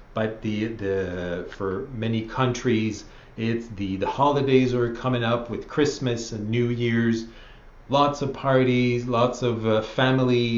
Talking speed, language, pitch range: 140 wpm, English, 110-135 Hz